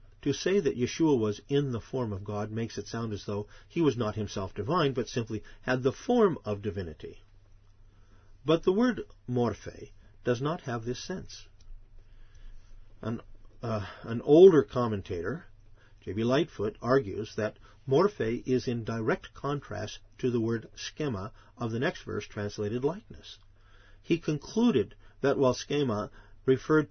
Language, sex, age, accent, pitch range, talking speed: English, male, 50-69, American, 105-135 Hz, 145 wpm